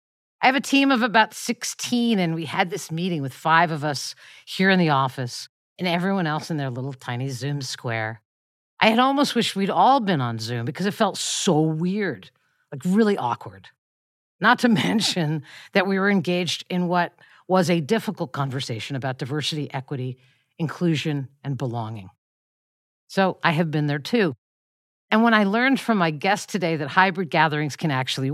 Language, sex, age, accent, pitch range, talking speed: English, female, 50-69, American, 140-195 Hz, 180 wpm